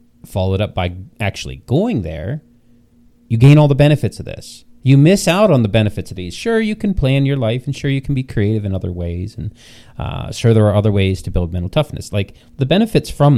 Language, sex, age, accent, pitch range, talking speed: English, male, 30-49, American, 100-125 Hz, 230 wpm